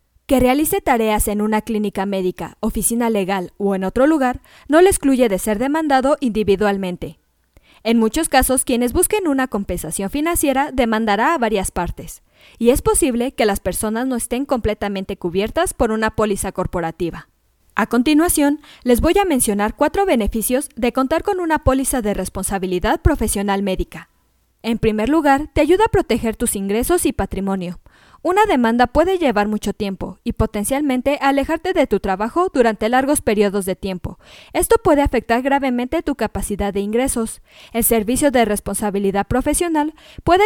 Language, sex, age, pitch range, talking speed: Spanish, female, 20-39, 205-290 Hz, 155 wpm